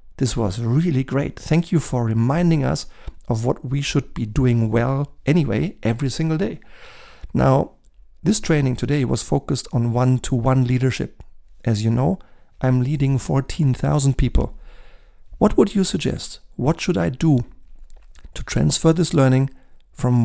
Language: German